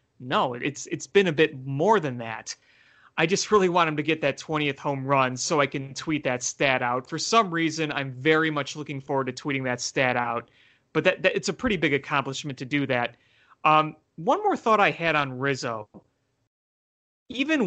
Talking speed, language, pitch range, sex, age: 205 wpm, English, 135-175 Hz, male, 30-49